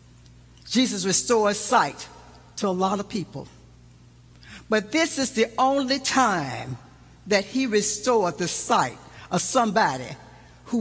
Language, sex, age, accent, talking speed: English, female, 60-79, American, 120 wpm